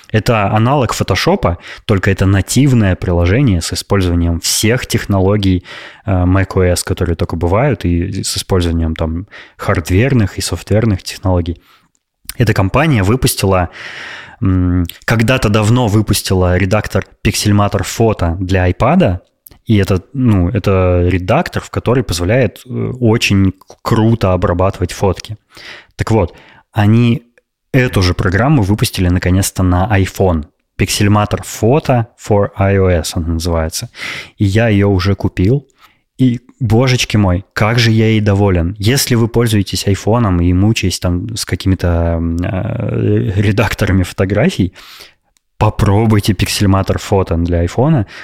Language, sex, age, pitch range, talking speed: Russian, male, 20-39, 95-115 Hz, 115 wpm